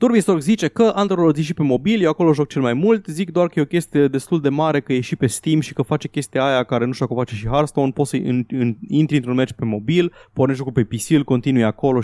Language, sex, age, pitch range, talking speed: Romanian, male, 20-39, 115-145 Hz, 275 wpm